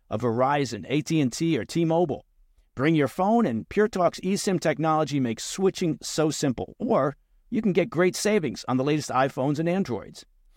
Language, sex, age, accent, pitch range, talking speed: English, male, 50-69, American, 115-170 Hz, 160 wpm